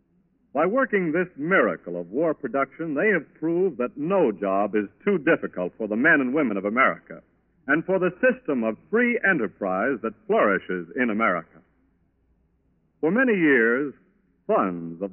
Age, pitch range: 60-79, 115-180 Hz